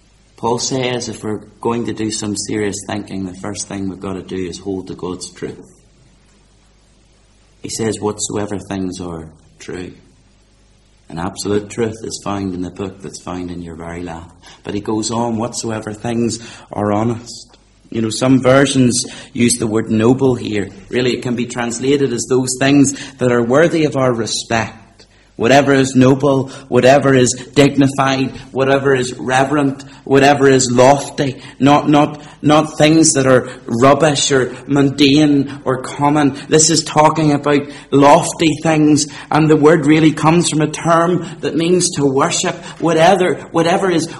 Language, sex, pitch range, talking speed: English, male, 110-160 Hz, 160 wpm